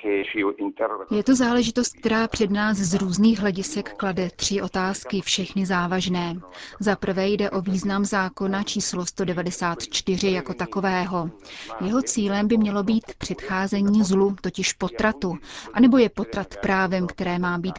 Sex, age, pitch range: female, 30-49, 185-215 Hz